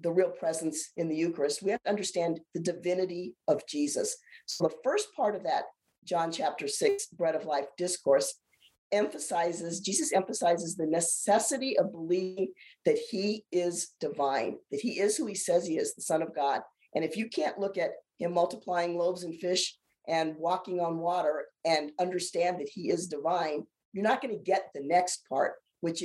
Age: 50-69